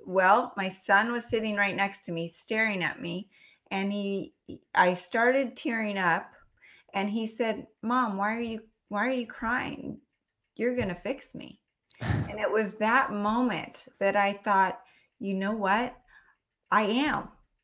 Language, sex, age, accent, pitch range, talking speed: English, female, 30-49, American, 180-225 Hz, 160 wpm